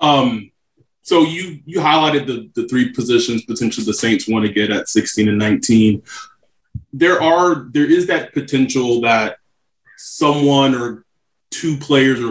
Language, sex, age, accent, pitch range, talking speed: English, male, 20-39, American, 115-140 Hz, 150 wpm